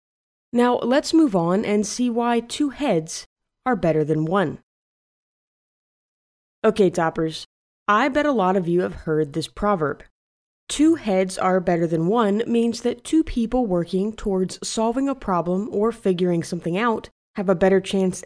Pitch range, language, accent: 180-240 Hz, English, American